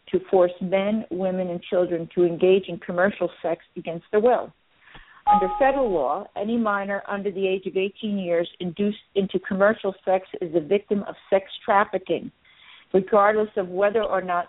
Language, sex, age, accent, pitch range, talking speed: English, female, 50-69, American, 180-205 Hz, 165 wpm